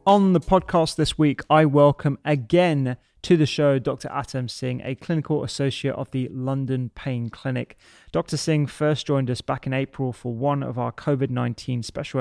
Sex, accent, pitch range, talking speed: male, British, 125-150 Hz, 175 wpm